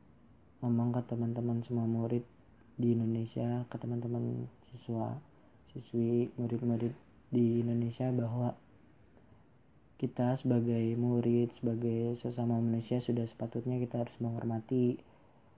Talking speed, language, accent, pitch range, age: 95 wpm, Indonesian, native, 115-125 Hz, 20-39